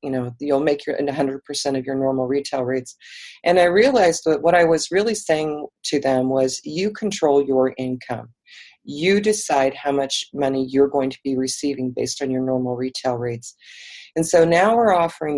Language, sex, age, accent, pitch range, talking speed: English, female, 40-59, American, 130-160 Hz, 185 wpm